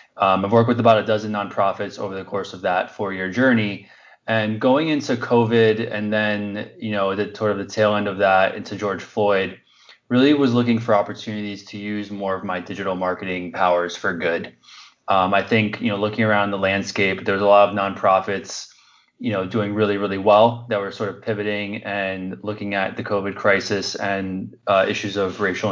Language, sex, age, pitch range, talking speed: English, male, 20-39, 95-110 Hz, 200 wpm